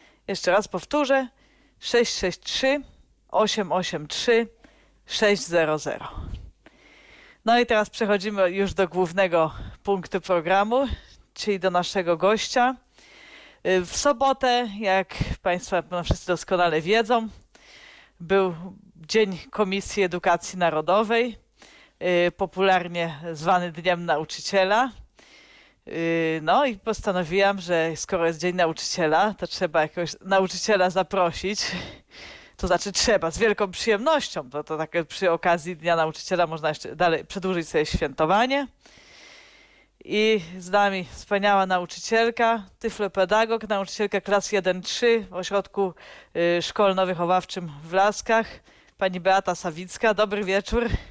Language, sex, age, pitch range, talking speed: Polish, female, 40-59, 175-215 Hz, 100 wpm